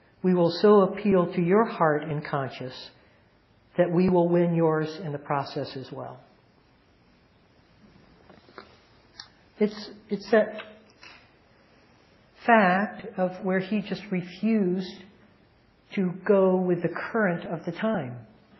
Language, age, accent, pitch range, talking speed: English, 60-79, American, 155-200 Hz, 115 wpm